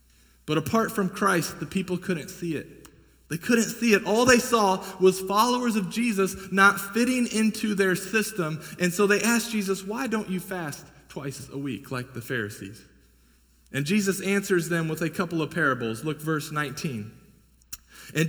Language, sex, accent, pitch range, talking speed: English, male, American, 145-205 Hz, 175 wpm